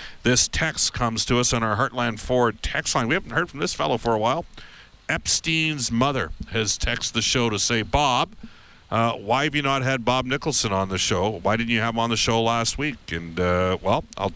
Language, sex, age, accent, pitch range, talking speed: English, male, 50-69, American, 100-125 Hz, 225 wpm